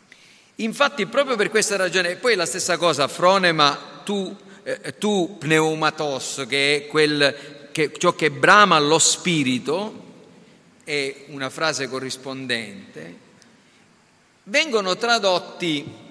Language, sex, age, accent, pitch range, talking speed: Italian, male, 50-69, native, 155-225 Hz, 110 wpm